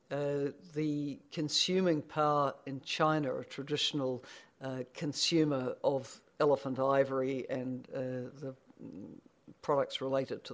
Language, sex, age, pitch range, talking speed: English, female, 60-79, 135-155 Hz, 110 wpm